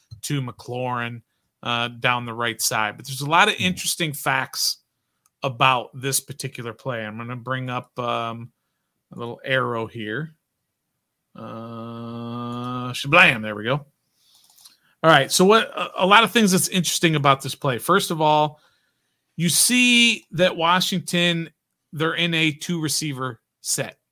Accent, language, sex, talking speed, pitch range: American, English, male, 145 wpm, 120-155 Hz